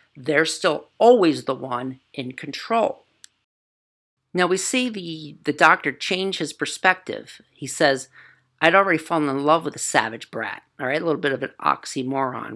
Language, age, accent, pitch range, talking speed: English, 50-69, American, 130-160 Hz, 165 wpm